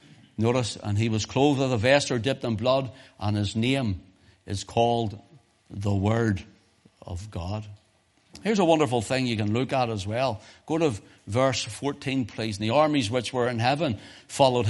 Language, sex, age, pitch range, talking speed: English, male, 60-79, 100-135 Hz, 180 wpm